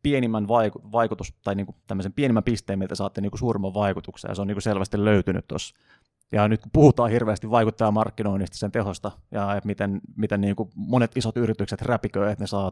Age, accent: 30-49, native